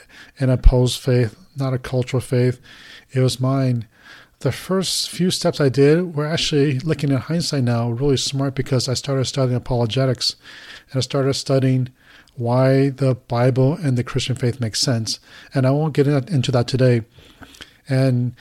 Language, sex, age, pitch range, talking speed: English, male, 40-59, 120-135 Hz, 165 wpm